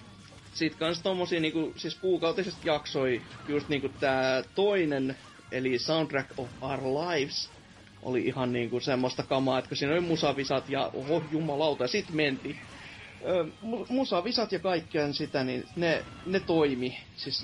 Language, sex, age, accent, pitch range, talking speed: Finnish, male, 30-49, native, 105-155 Hz, 135 wpm